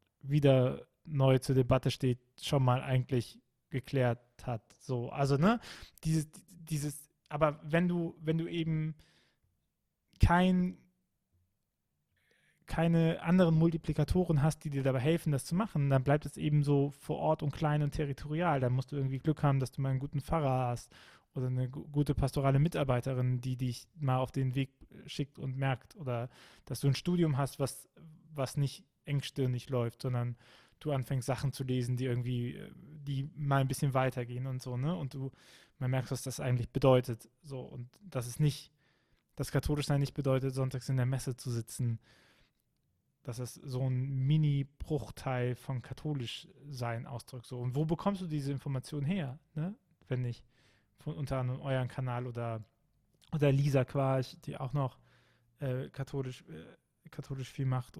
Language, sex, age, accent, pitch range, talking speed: German, male, 20-39, German, 125-150 Hz, 165 wpm